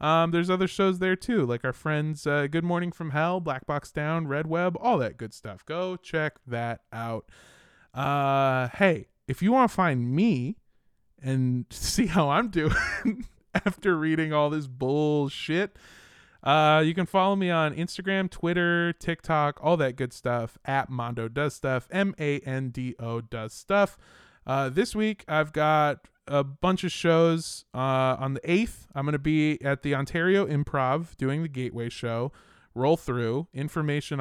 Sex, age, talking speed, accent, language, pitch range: male, 20-39, 160 wpm, American, English, 130-170 Hz